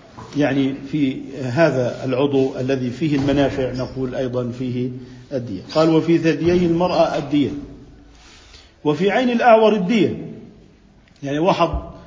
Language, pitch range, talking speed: Arabic, 140-195 Hz, 110 wpm